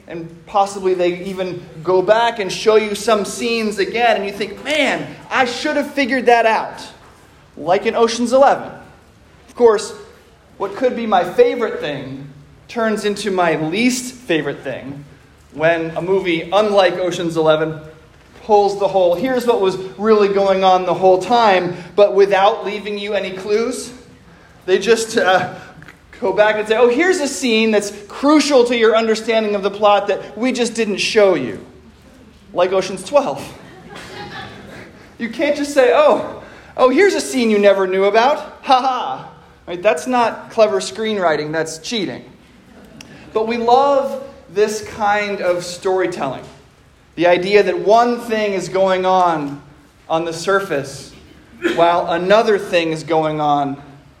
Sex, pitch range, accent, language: male, 180-235 Hz, American, English